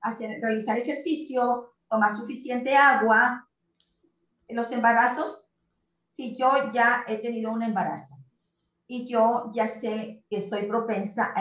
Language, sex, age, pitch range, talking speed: Spanish, female, 40-59, 205-260 Hz, 120 wpm